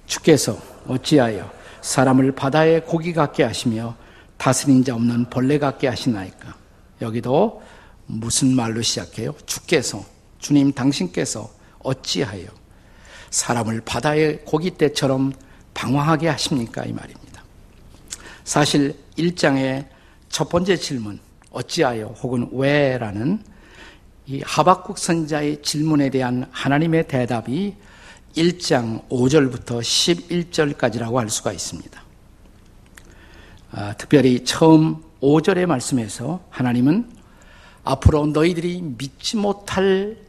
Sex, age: male, 50-69